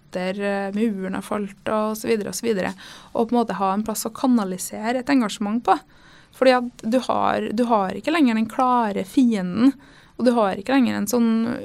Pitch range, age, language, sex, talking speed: 205-240 Hz, 20-39, Danish, female, 195 wpm